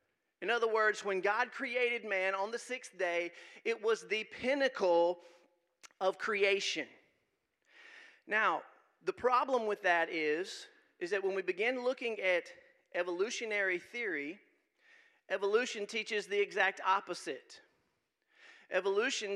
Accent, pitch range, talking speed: American, 190-250 Hz, 120 wpm